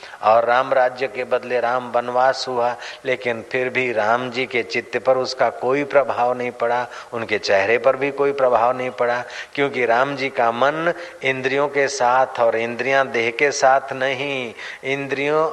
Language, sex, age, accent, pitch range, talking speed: Hindi, male, 40-59, native, 120-140 Hz, 170 wpm